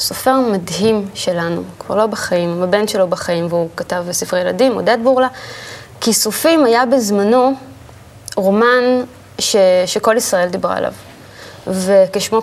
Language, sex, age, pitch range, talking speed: Hebrew, female, 20-39, 185-240 Hz, 125 wpm